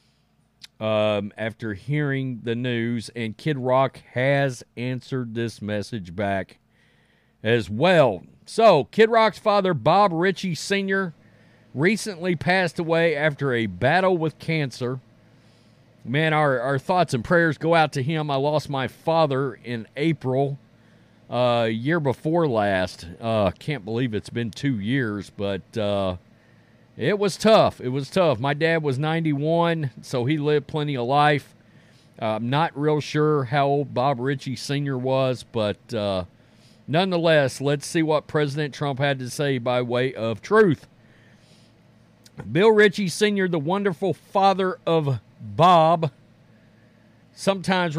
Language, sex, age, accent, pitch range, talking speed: English, male, 40-59, American, 120-160 Hz, 135 wpm